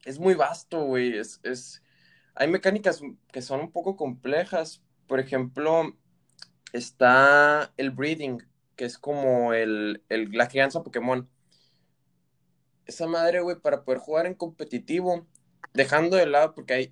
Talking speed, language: 140 wpm, Spanish